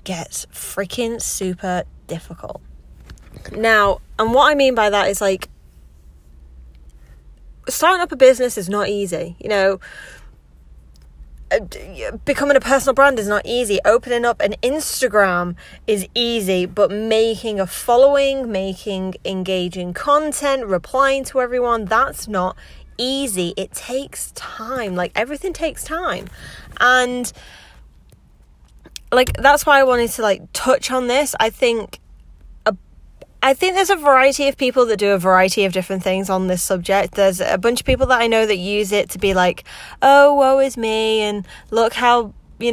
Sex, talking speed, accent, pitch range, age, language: female, 150 wpm, British, 185-255 Hz, 20-39, English